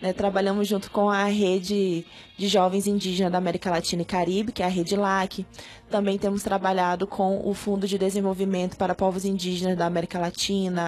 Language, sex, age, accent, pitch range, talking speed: Portuguese, female, 20-39, Brazilian, 190-215 Hz, 175 wpm